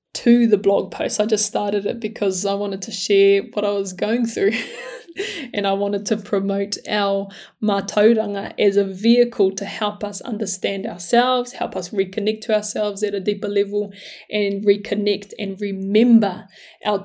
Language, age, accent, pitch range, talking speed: English, 20-39, Australian, 205-240 Hz, 165 wpm